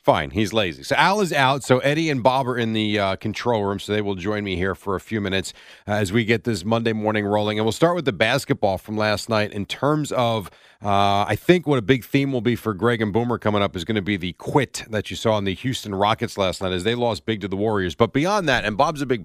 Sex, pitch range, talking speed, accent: male, 105-135 Hz, 280 wpm, American